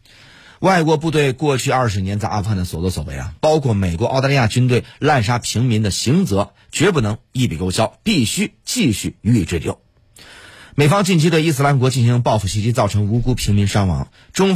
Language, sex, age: Chinese, male, 30-49